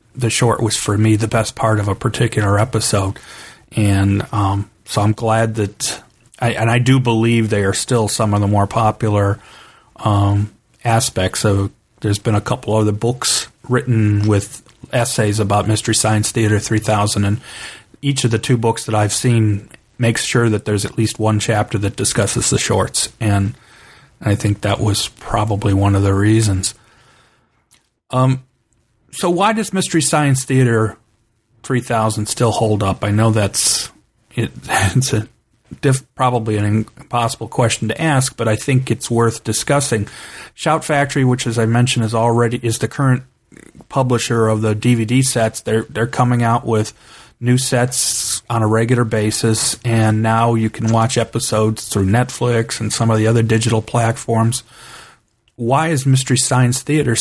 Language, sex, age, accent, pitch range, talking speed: English, male, 40-59, American, 110-120 Hz, 165 wpm